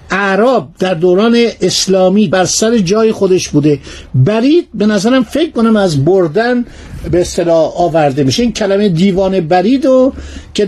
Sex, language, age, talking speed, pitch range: male, Persian, 60-79, 145 wpm, 165-220 Hz